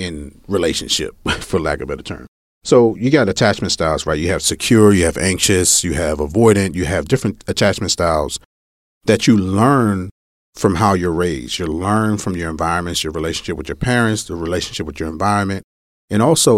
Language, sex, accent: English, male, American